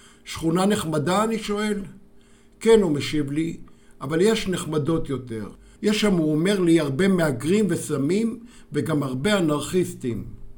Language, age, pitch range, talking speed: Hebrew, 60-79, 145-190 Hz, 130 wpm